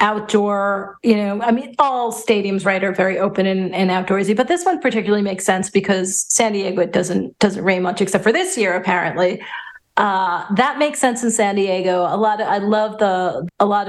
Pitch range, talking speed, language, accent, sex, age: 185-225 Hz, 205 wpm, English, American, female, 30-49